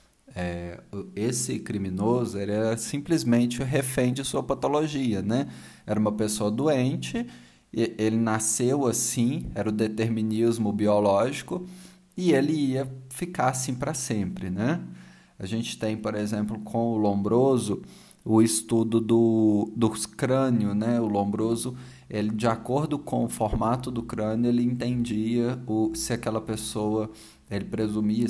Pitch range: 105-120 Hz